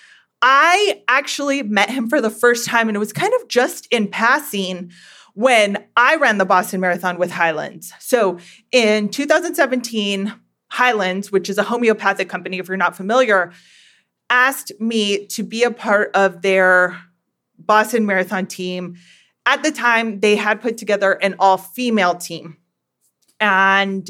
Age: 30-49